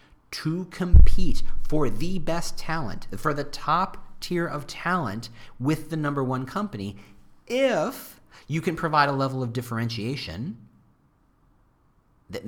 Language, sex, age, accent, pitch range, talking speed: English, male, 40-59, American, 115-160 Hz, 125 wpm